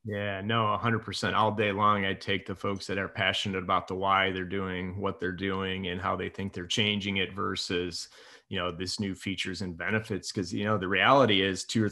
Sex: male